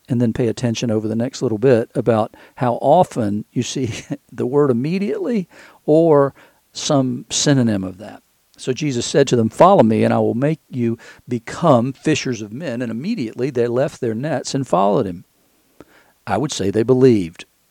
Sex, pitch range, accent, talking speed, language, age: male, 110-135 Hz, American, 175 wpm, English, 50-69